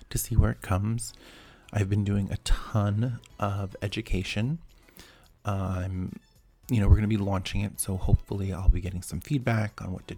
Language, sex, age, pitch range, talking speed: English, male, 30-49, 95-110 Hz, 175 wpm